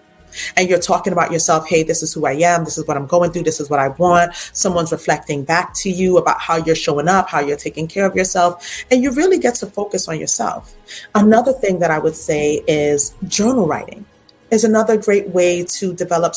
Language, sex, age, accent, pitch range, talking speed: English, female, 30-49, American, 175-215 Hz, 225 wpm